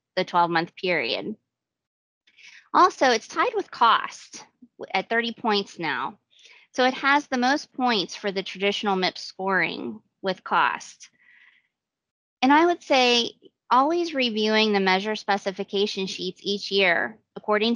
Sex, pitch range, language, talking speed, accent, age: female, 185-230 Hz, English, 130 wpm, American, 30-49